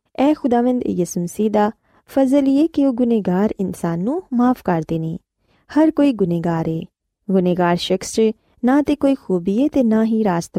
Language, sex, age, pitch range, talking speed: Punjabi, female, 20-39, 180-260 Hz, 160 wpm